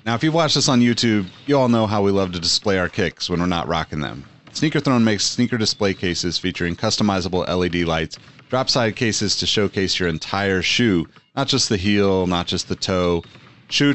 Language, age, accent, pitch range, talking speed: English, 30-49, American, 95-125 Hz, 210 wpm